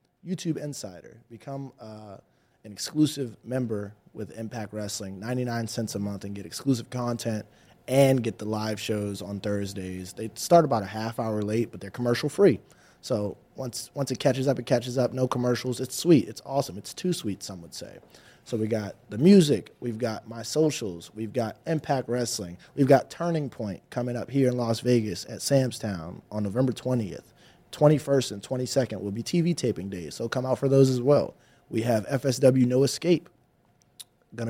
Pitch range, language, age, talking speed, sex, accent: 105-125 Hz, English, 20-39, 185 wpm, male, American